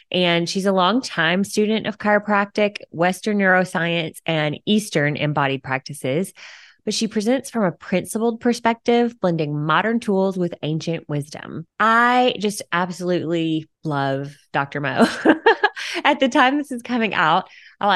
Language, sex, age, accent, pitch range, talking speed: English, female, 20-39, American, 150-190 Hz, 135 wpm